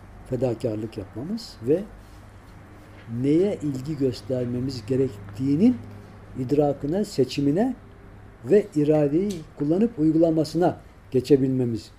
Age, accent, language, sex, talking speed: 60-79, native, Turkish, male, 70 wpm